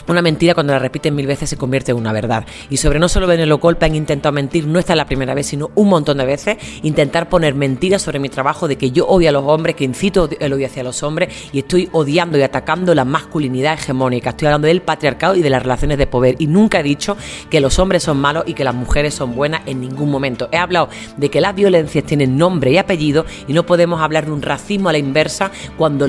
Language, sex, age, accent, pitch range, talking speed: Spanish, female, 30-49, Spanish, 140-170 Hz, 250 wpm